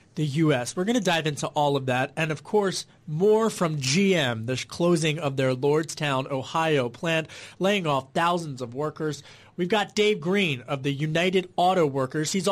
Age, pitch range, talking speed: 30-49, 150-190 Hz, 180 wpm